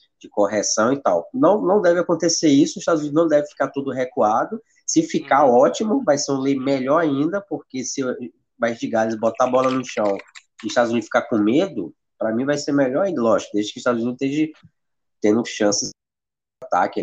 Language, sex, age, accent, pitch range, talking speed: Portuguese, male, 20-39, Brazilian, 115-170 Hz, 210 wpm